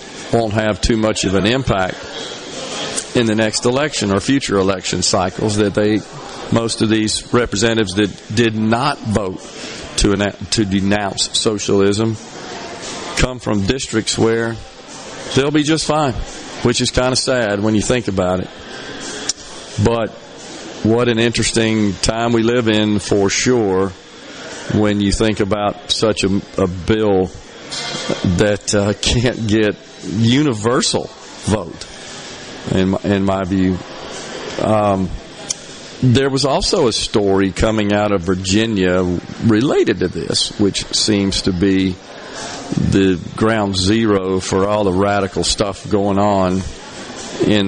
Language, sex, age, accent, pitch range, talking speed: English, male, 50-69, American, 95-115 Hz, 130 wpm